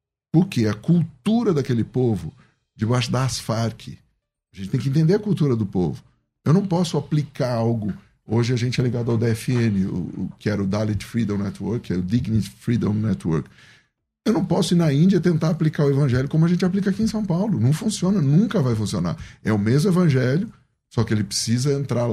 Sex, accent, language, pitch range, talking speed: male, Brazilian, Portuguese, 115-160 Hz, 205 wpm